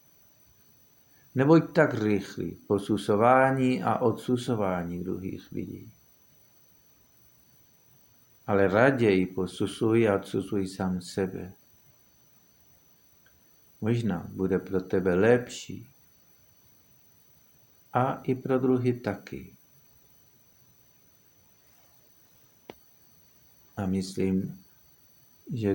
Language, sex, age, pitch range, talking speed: Czech, male, 60-79, 95-125 Hz, 65 wpm